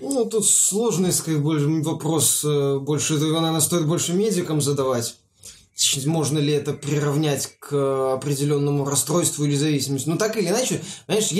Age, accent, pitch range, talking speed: 20-39, native, 140-180 Hz, 125 wpm